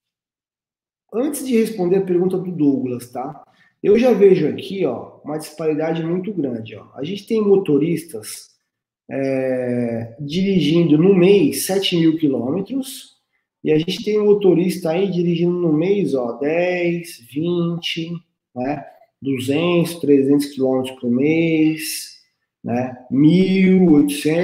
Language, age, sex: Portuguese, 20-39, male